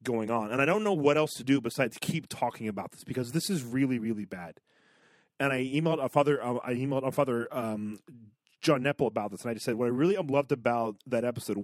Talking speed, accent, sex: 240 wpm, American, male